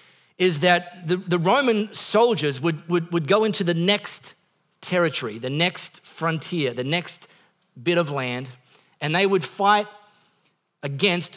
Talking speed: 125 wpm